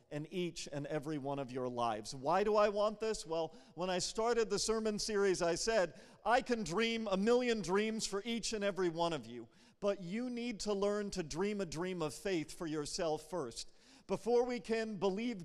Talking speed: 205 wpm